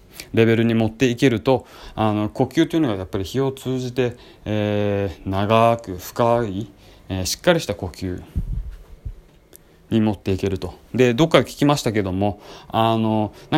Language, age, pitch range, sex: Japanese, 20-39, 95-115 Hz, male